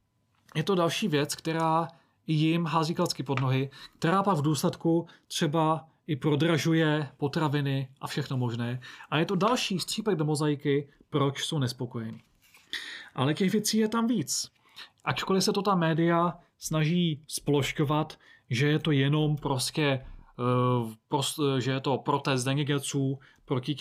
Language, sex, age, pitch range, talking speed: Czech, male, 30-49, 135-170 Hz, 140 wpm